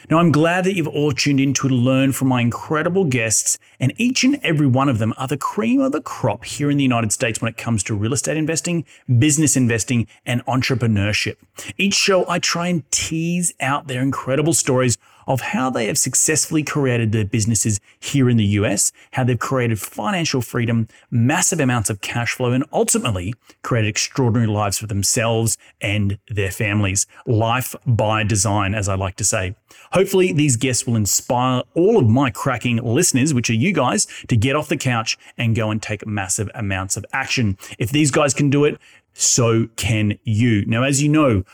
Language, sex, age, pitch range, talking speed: English, male, 30-49, 110-140 Hz, 190 wpm